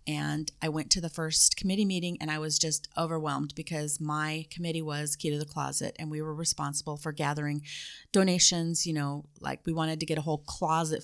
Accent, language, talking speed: American, English, 205 wpm